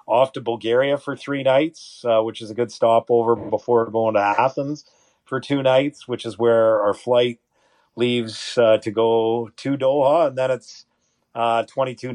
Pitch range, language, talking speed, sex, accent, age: 110-120 Hz, English, 175 wpm, male, American, 40-59